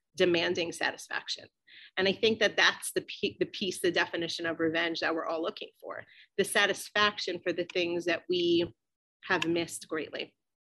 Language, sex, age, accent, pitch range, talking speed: English, female, 30-49, American, 170-215 Hz, 165 wpm